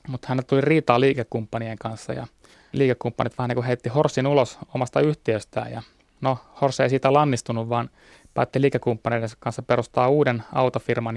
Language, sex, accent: Finnish, male, native